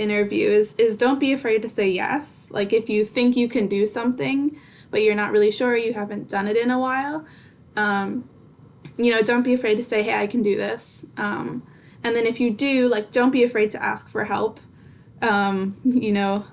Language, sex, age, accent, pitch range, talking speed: English, female, 10-29, American, 200-235 Hz, 215 wpm